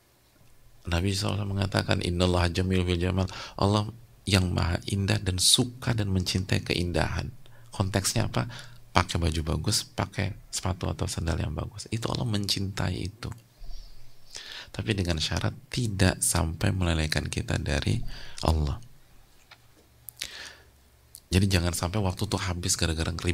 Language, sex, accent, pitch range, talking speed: English, male, Indonesian, 90-115 Hz, 125 wpm